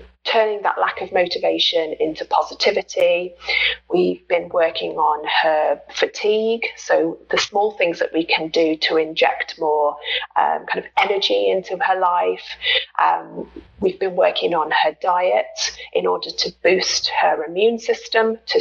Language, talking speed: English, 145 wpm